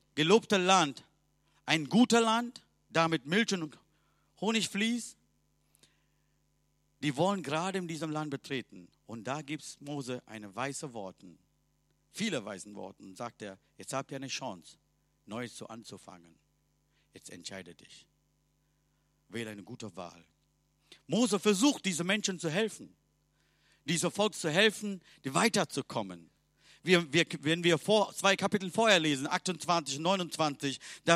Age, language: 50-69, German